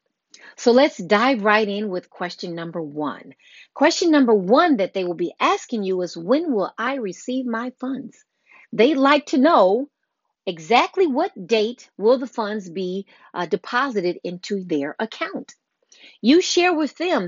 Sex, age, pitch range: female, 40-59, 185-270 Hz